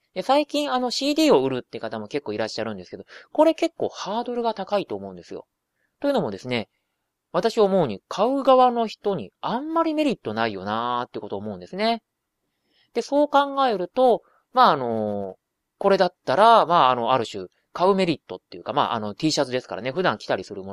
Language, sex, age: Japanese, male, 30-49